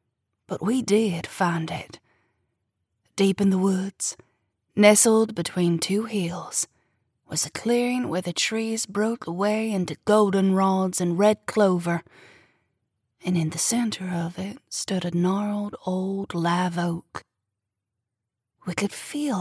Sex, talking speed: female, 130 wpm